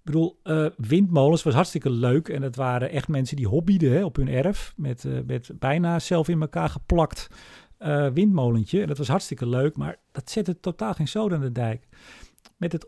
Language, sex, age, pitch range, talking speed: Dutch, male, 50-69, 130-175 Hz, 205 wpm